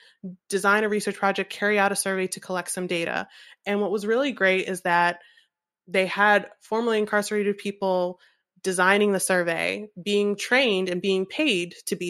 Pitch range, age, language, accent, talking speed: 180-205 Hz, 20-39, English, American, 170 wpm